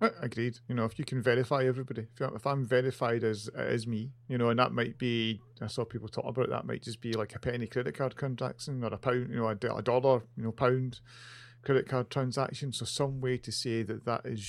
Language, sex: English, male